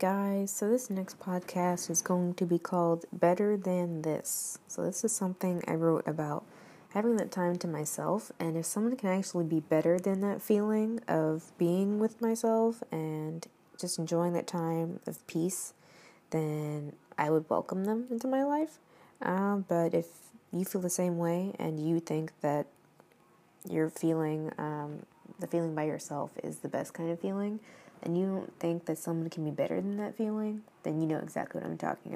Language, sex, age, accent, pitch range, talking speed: English, female, 20-39, American, 165-200 Hz, 185 wpm